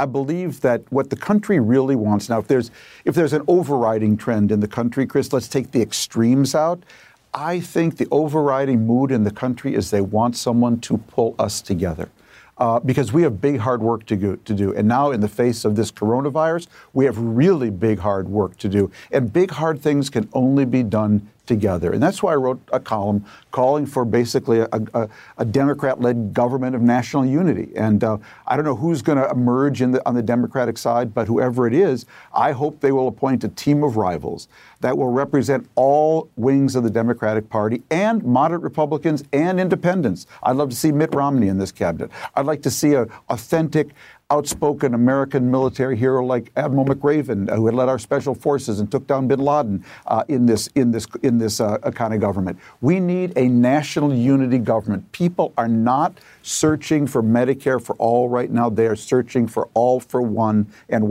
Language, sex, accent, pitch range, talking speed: English, male, American, 115-140 Hz, 195 wpm